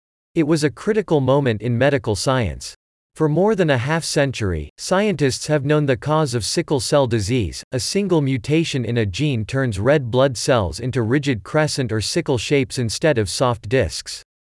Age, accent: 40-59, American